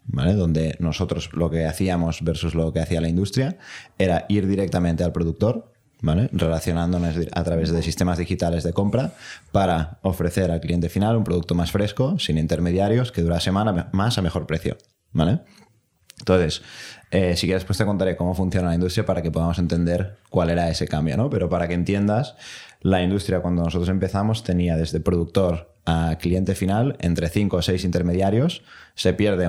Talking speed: 175 wpm